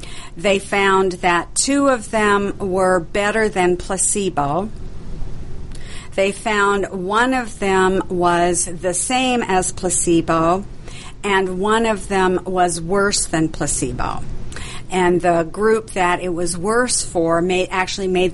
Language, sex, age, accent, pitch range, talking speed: English, female, 50-69, American, 165-195 Hz, 130 wpm